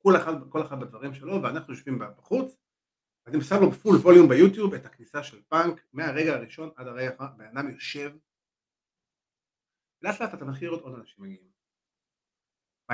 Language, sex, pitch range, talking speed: Hebrew, male, 135-195 Hz, 160 wpm